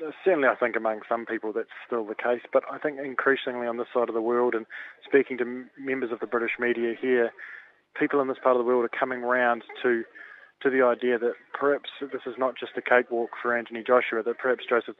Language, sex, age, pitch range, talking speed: English, male, 20-39, 115-130 Hz, 230 wpm